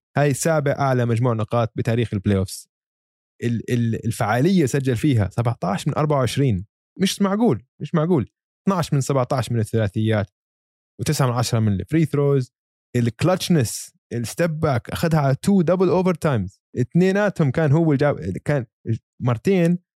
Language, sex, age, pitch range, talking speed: Arabic, male, 20-39, 110-150 Hz, 135 wpm